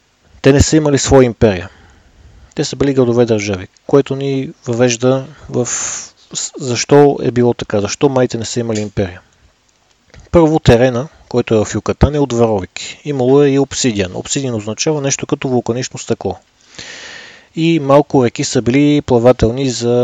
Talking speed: 155 wpm